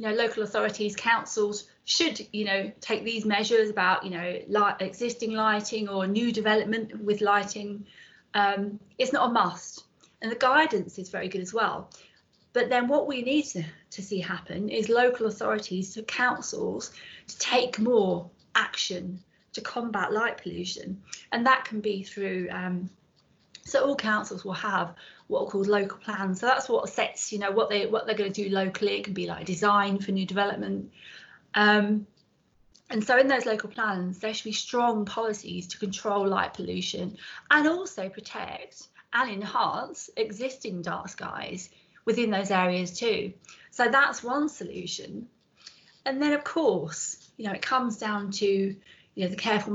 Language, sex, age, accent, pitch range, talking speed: English, female, 30-49, British, 195-235 Hz, 170 wpm